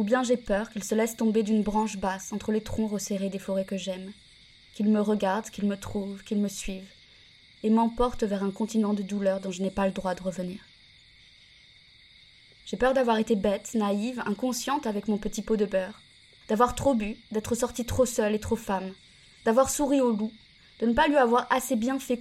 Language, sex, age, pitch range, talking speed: French, female, 20-39, 195-230 Hz, 210 wpm